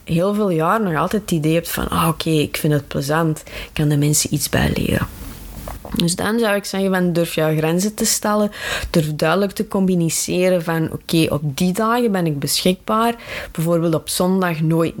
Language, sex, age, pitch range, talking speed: Dutch, female, 20-39, 150-180 Hz, 205 wpm